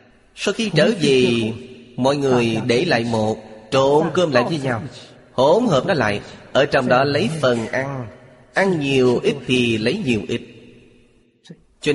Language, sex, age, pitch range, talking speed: Vietnamese, male, 30-49, 120-150 Hz, 160 wpm